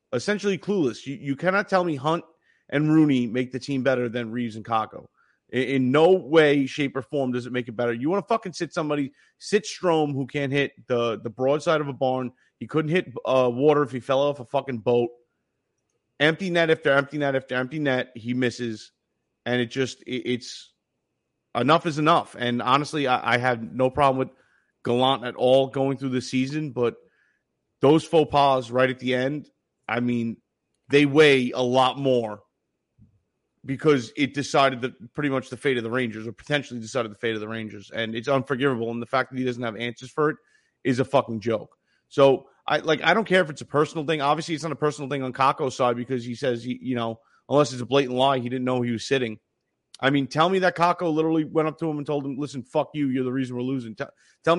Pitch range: 125-150 Hz